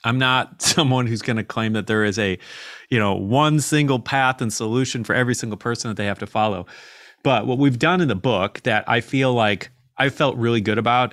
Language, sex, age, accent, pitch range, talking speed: English, male, 30-49, American, 105-130 Hz, 230 wpm